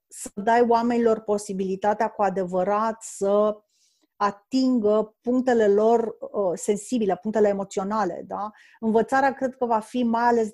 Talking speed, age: 125 wpm, 30-49